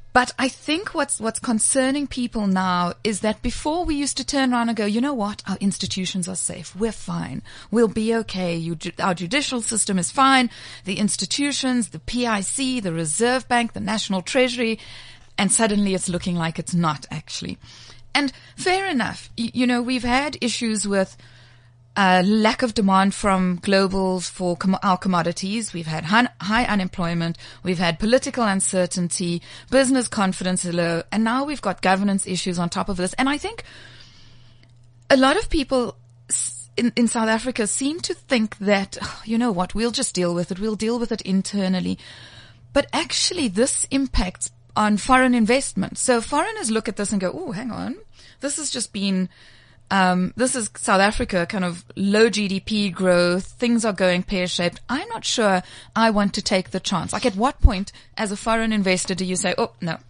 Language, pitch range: English, 180-240 Hz